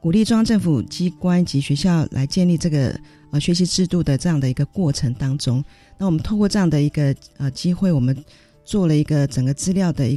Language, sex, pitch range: Chinese, female, 135-180 Hz